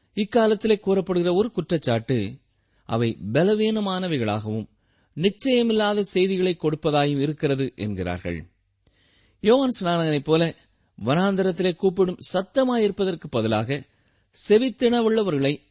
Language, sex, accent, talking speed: Tamil, male, native, 70 wpm